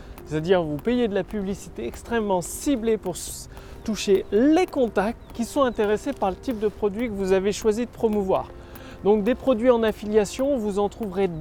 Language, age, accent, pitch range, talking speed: French, 30-49, French, 175-230 Hz, 185 wpm